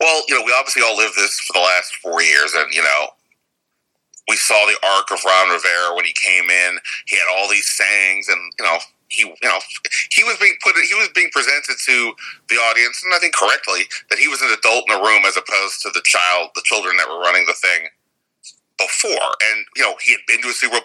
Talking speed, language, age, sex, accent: 240 wpm, English, 40-59, male, American